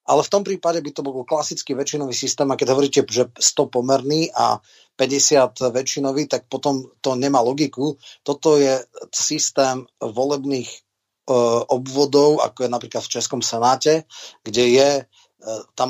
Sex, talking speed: male, 145 wpm